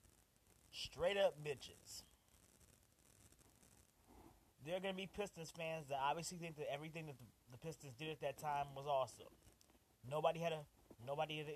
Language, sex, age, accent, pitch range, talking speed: English, male, 30-49, American, 125-165 Hz, 155 wpm